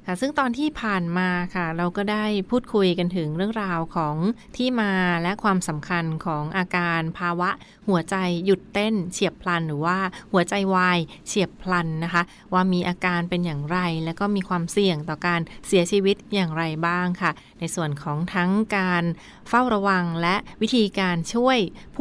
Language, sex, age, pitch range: Thai, female, 30-49, 170-200 Hz